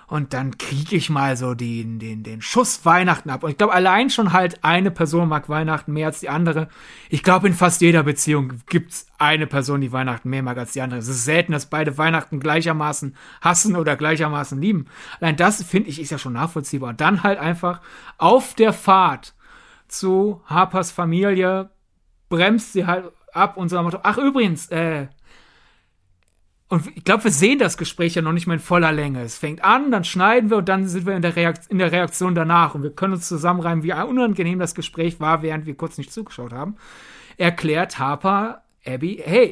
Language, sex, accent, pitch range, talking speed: German, male, German, 155-195 Hz, 195 wpm